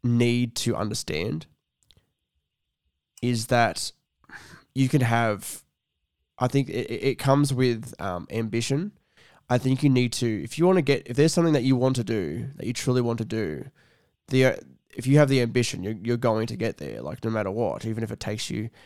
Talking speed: 195 wpm